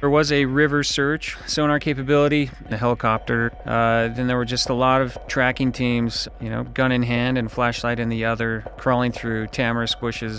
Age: 30-49